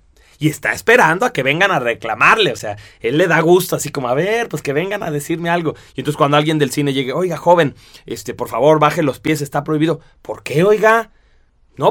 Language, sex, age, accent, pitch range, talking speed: Spanish, male, 30-49, Mexican, 145-200 Hz, 225 wpm